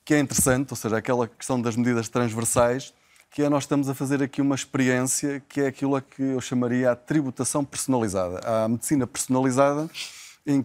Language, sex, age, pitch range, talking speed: Portuguese, male, 20-39, 125-155 Hz, 185 wpm